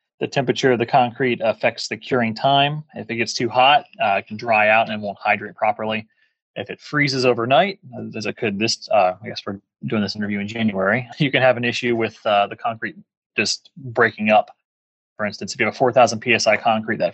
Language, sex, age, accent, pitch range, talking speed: English, male, 30-49, American, 105-135 Hz, 215 wpm